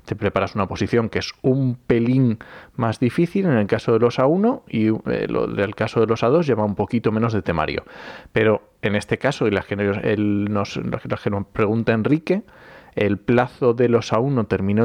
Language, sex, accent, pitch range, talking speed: Spanish, male, Spanish, 105-135 Hz, 195 wpm